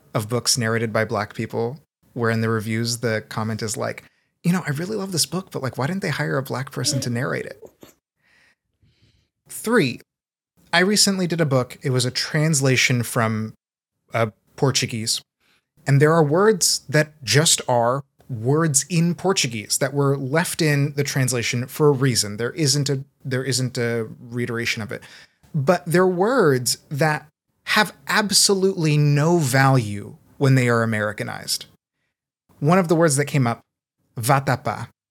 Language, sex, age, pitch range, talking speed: English, male, 20-39, 125-170 Hz, 160 wpm